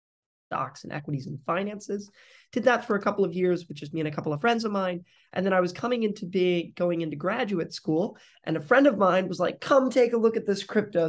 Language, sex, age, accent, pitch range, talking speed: English, male, 20-39, American, 165-205 Hz, 255 wpm